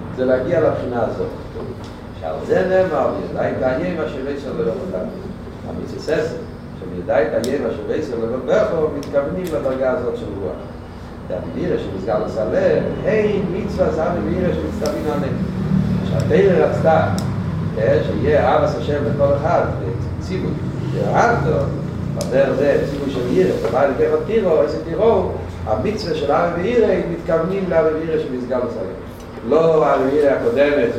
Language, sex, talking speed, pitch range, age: Hebrew, male, 80 wpm, 115-155 Hz, 40-59